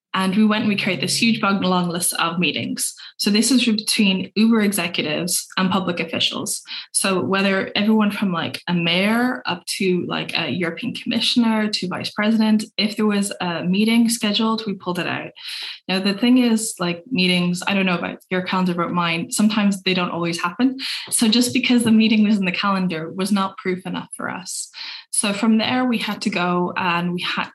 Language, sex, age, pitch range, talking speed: English, female, 10-29, 180-220 Hz, 200 wpm